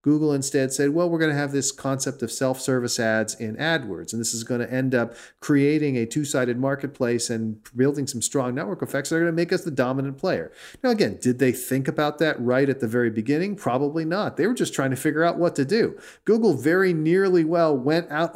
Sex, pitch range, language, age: male, 120-155 Hz, English, 40-59